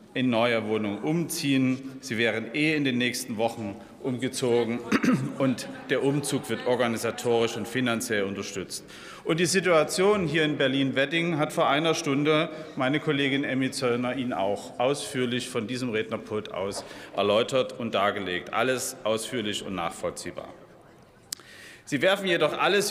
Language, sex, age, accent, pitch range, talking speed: German, male, 40-59, German, 110-150 Hz, 140 wpm